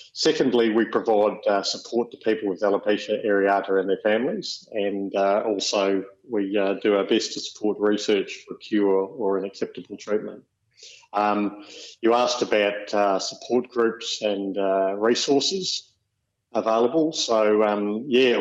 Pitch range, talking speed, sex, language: 95-110 Hz, 145 wpm, male, English